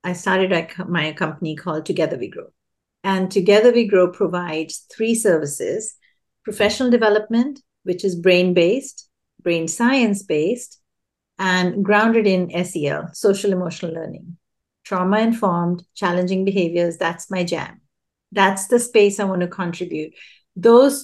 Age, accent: 50-69, Indian